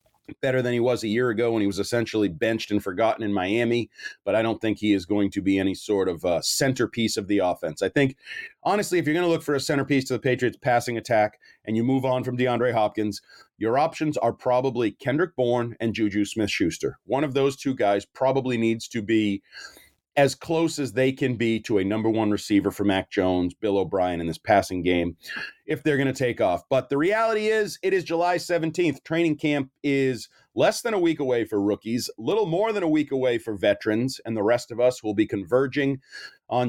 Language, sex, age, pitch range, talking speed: English, male, 40-59, 110-145 Hz, 220 wpm